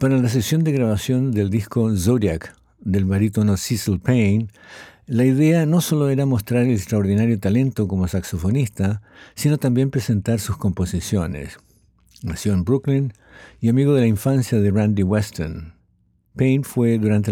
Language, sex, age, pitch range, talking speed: English, male, 60-79, 95-115 Hz, 145 wpm